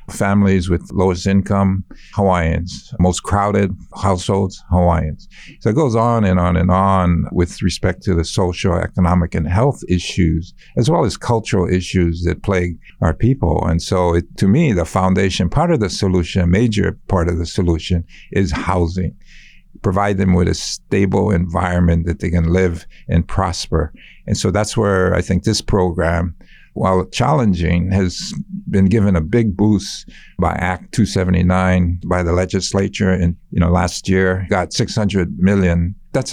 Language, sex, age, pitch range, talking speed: English, male, 60-79, 90-100 Hz, 155 wpm